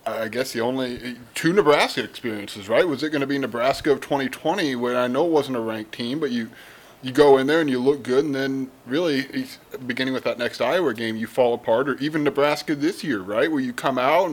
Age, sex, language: 30-49, male, English